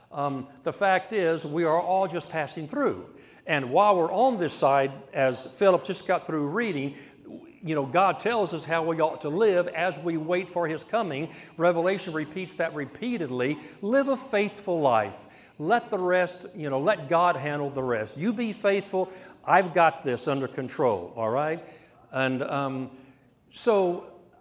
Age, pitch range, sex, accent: 60-79, 120-175 Hz, male, American